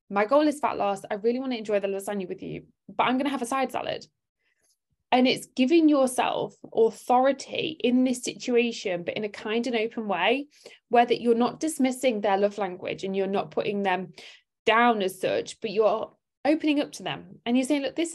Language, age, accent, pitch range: English, 20-39, British, 200-250 Hz